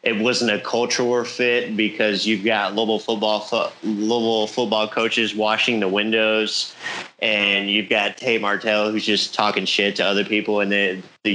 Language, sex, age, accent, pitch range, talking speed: English, male, 30-49, American, 100-115 Hz, 165 wpm